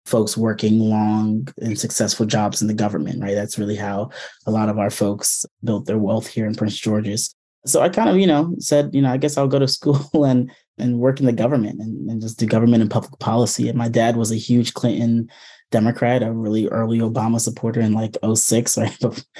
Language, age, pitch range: English, 20-39, 110-120 Hz